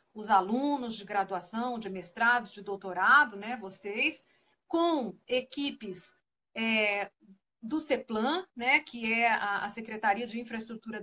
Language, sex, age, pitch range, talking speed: Portuguese, female, 40-59, 215-315 Hz, 115 wpm